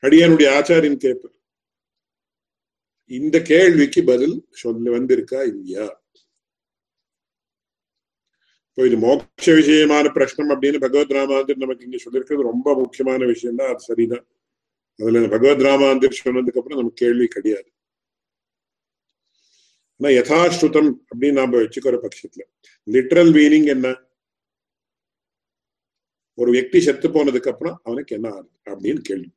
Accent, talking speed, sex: Indian, 65 wpm, male